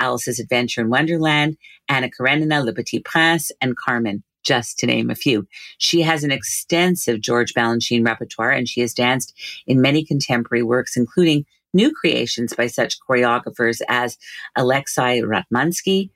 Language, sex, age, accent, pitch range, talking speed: English, female, 40-59, American, 120-155 Hz, 150 wpm